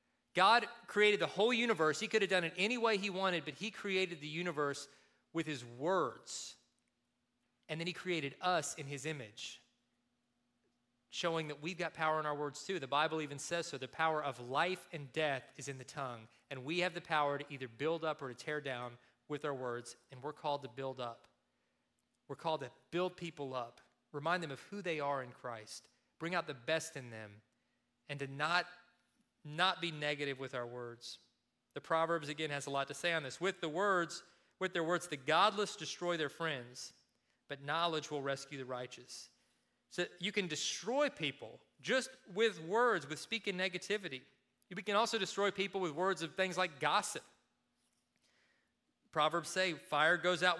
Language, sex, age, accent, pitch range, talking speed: English, male, 30-49, American, 140-180 Hz, 190 wpm